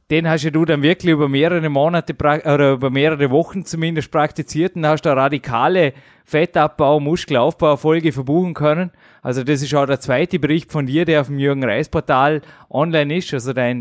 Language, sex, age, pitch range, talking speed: German, male, 20-39, 140-160 Hz, 180 wpm